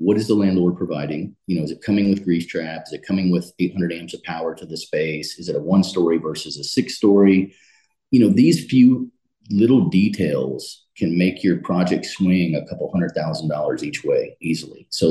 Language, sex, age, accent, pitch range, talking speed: English, male, 30-49, American, 85-105 Hz, 210 wpm